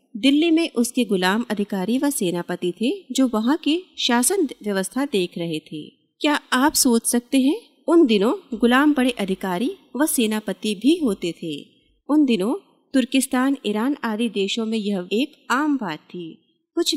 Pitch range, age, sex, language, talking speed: 200-280 Hz, 30-49, female, Hindi, 155 wpm